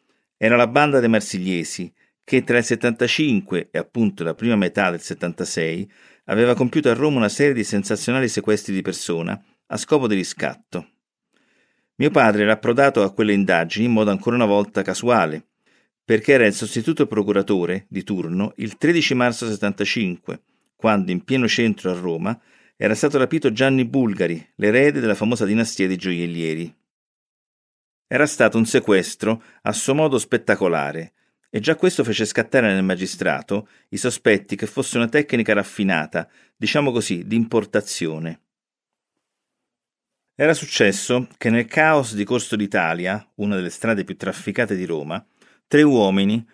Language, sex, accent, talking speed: Italian, male, native, 150 wpm